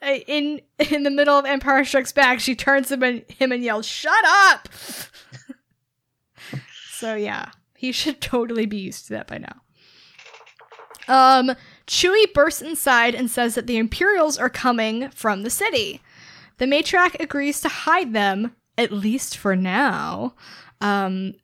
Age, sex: 10-29, female